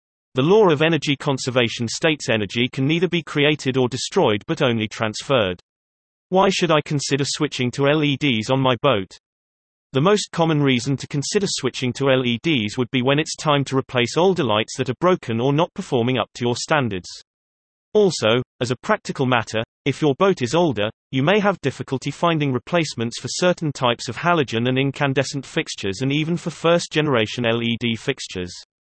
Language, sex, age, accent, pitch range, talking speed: English, male, 30-49, British, 120-155 Hz, 175 wpm